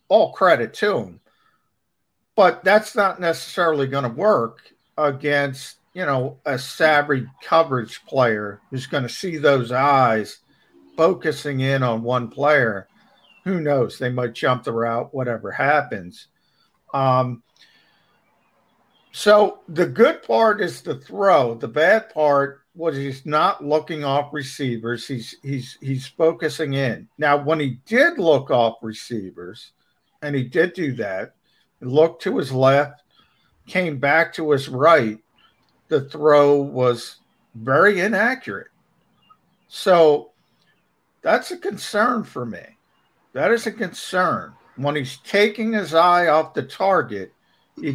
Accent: American